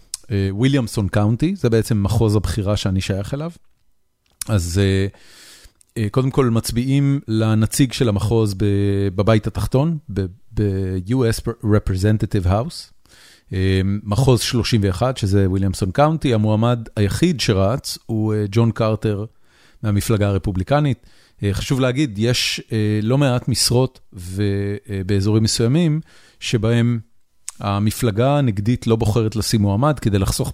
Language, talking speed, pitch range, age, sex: Hebrew, 100 wpm, 100-120 Hz, 40-59, male